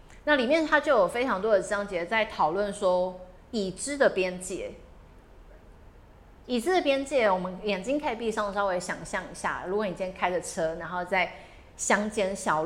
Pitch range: 185-245 Hz